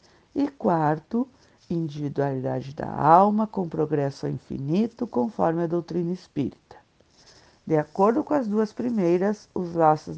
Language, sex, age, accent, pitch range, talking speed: Portuguese, female, 50-69, Brazilian, 160-205 Hz, 120 wpm